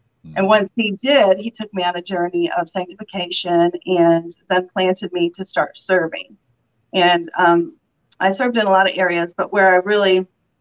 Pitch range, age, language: 170-195 Hz, 40-59, English